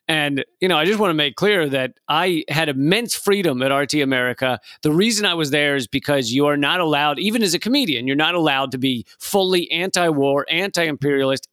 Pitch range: 135-175 Hz